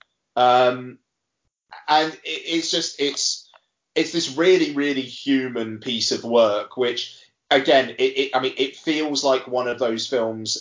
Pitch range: 110-140 Hz